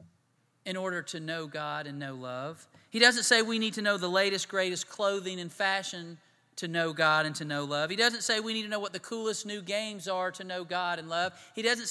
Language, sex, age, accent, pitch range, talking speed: English, male, 40-59, American, 165-210 Hz, 240 wpm